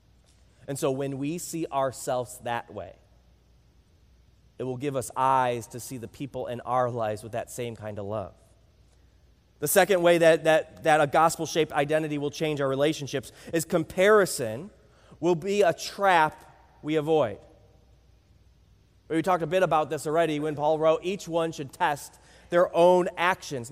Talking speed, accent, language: 160 wpm, American, English